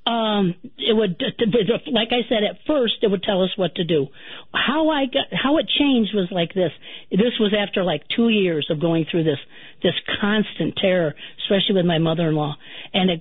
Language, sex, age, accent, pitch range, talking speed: English, female, 50-69, American, 175-225 Hz, 205 wpm